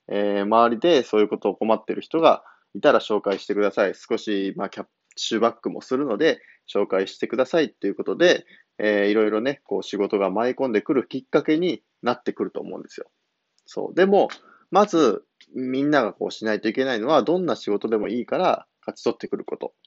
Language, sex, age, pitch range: Japanese, male, 20-39, 105-150 Hz